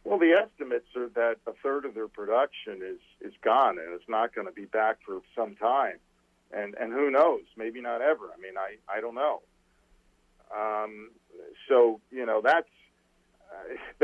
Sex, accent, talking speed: male, American, 180 wpm